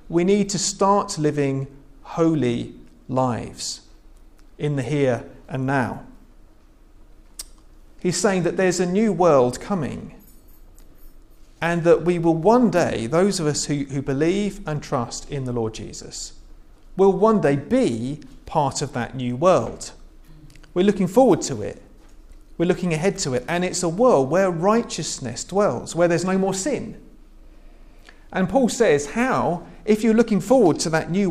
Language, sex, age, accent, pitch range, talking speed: English, male, 40-59, British, 135-190 Hz, 155 wpm